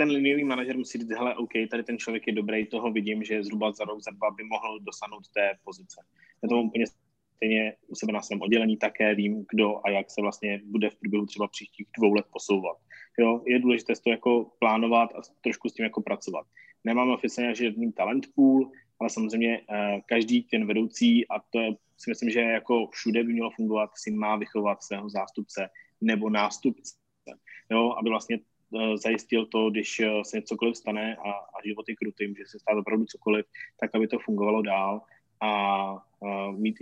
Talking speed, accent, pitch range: 185 wpm, native, 105-125 Hz